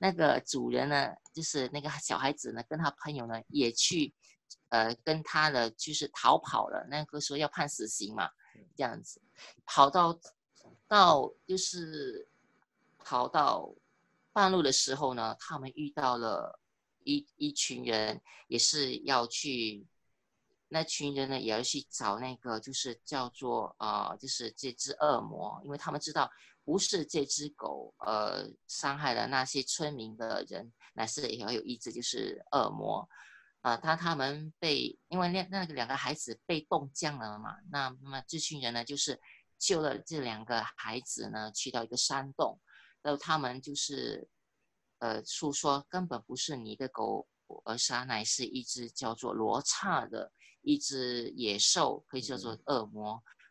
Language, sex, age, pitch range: English, female, 20-39, 120-150 Hz